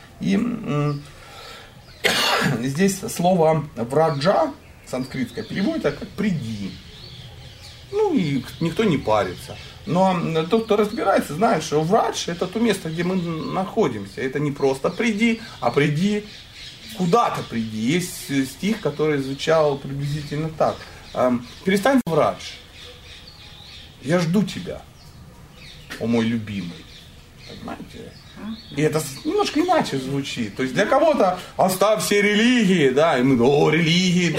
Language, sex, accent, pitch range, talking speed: Russian, male, native, 135-195 Hz, 115 wpm